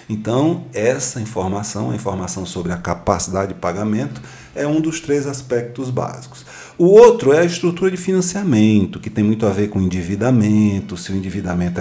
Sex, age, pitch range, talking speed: male, 40-59, 95-140 Hz, 170 wpm